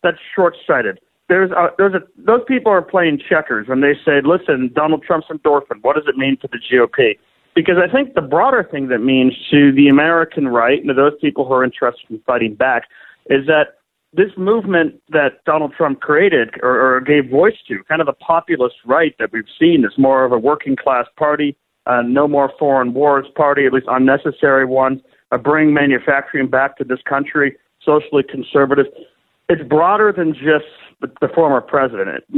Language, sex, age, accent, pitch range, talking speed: English, male, 40-59, American, 135-180 Hz, 175 wpm